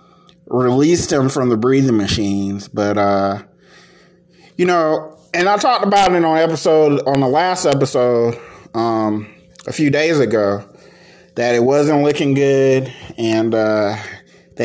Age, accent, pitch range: 30-49, American, 120-160 Hz